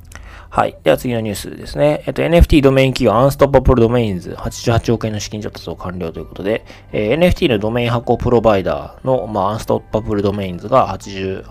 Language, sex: Japanese, male